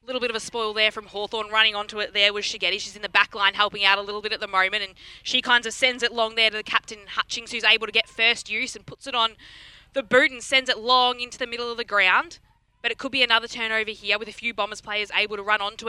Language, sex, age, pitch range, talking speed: English, female, 20-39, 205-240 Hz, 295 wpm